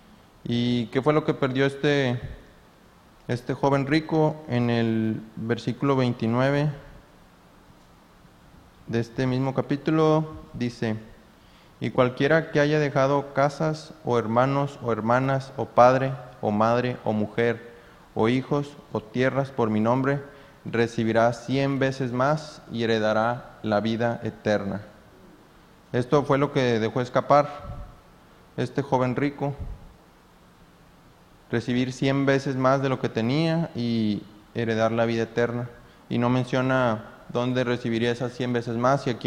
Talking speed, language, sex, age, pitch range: 130 wpm, Spanish, male, 30-49, 115-135 Hz